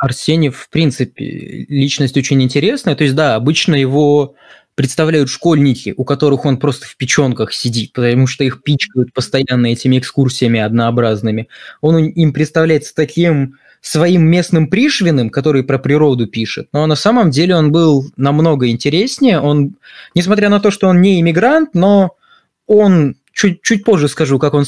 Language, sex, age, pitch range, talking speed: Russian, male, 20-39, 135-165 Hz, 155 wpm